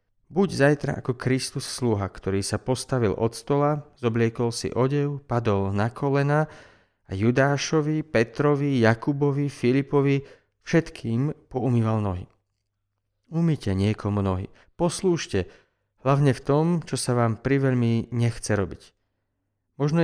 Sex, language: male, Slovak